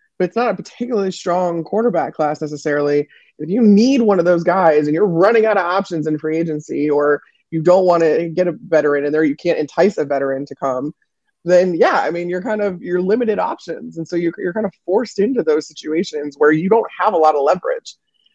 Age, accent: 20-39, American